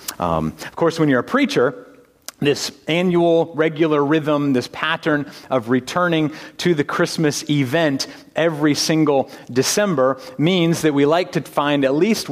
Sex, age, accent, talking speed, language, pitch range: male, 40-59, American, 145 wpm, English, 125-165 Hz